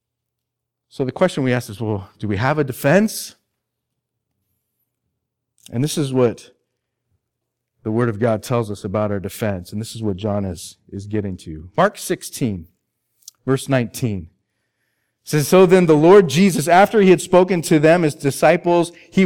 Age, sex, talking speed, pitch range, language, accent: 40-59, male, 170 wpm, 120-195 Hz, English, American